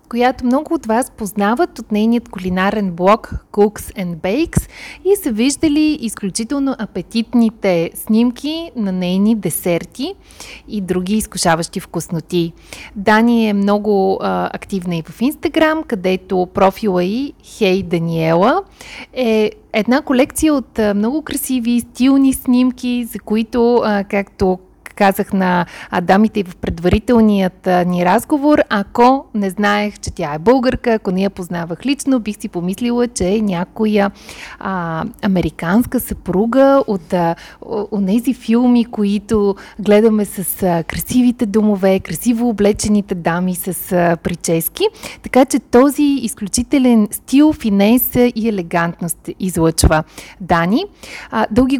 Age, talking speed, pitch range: 30-49, 120 wpm, 185-245 Hz